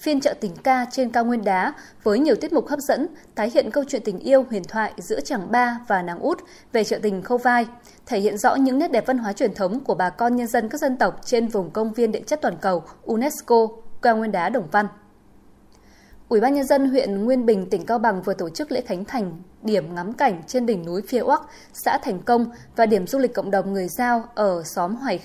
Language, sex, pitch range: Vietnamese, female, 205-265 Hz